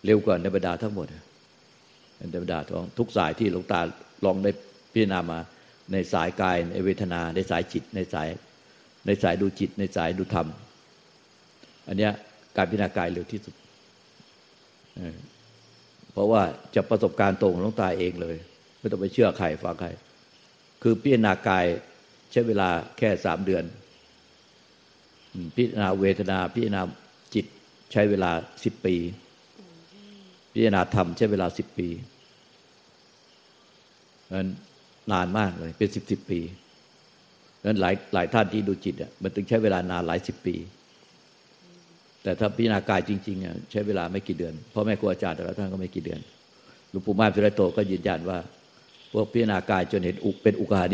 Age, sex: 60-79, male